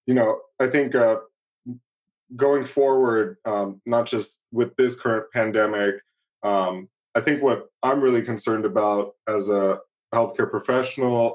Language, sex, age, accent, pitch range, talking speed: English, male, 20-39, American, 105-125 Hz, 135 wpm